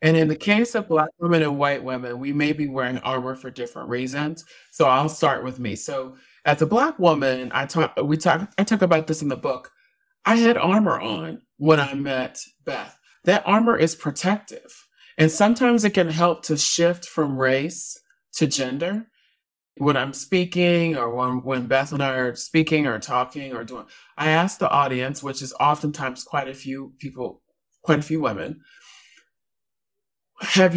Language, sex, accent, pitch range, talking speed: English, male, American, 130-170 Hz, 175 wpm